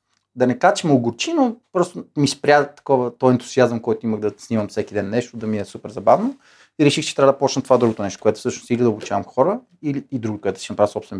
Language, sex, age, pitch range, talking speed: Bulgarian, male, 30-49, 110-125 Hz, 230 wpm